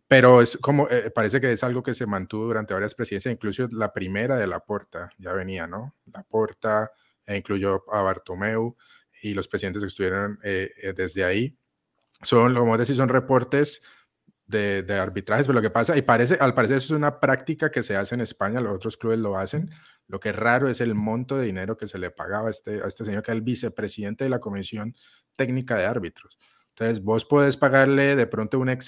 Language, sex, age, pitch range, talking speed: Spanish, male, 30-49, 105-125 Hz, 220 wpm